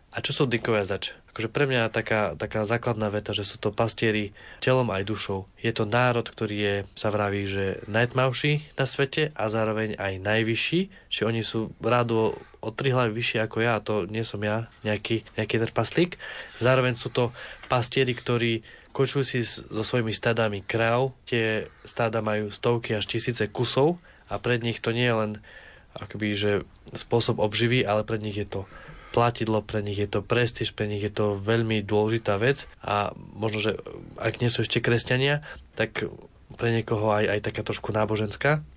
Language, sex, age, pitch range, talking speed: Slovak, male, 20-39, 105-120 Hz, 180 wpm